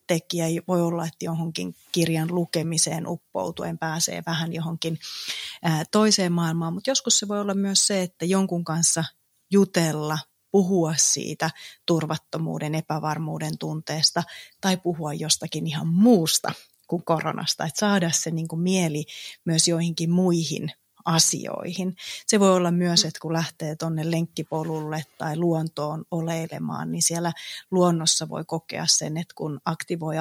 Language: Finnish